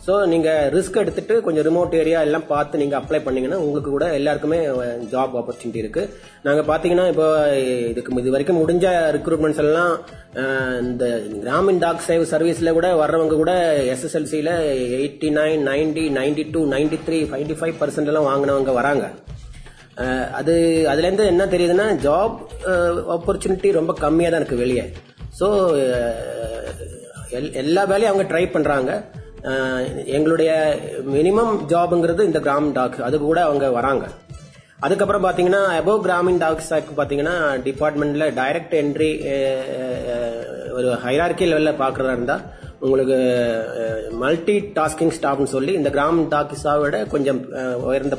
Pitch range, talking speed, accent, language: 135-165 Hz, 125 wpm, native, Tamil